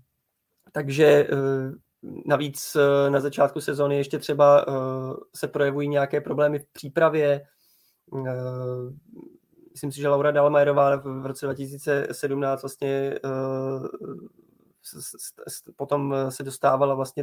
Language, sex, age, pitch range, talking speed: Czech, male, 20-39, 135-150 Hz, 90 wpm